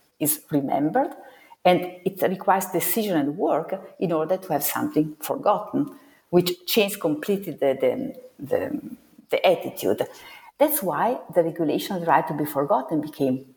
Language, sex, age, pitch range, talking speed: English, female, 50-69, 155-200 Hz, 135 wpm